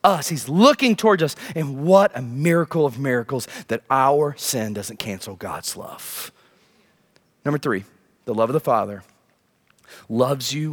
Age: 30-49